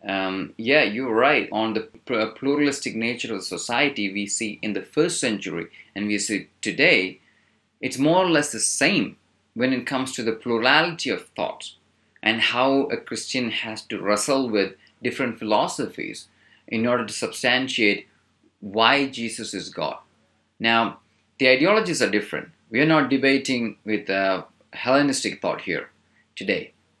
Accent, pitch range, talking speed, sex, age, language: Indian, 110-140 Hz, 145 wpm, male, 30-49, English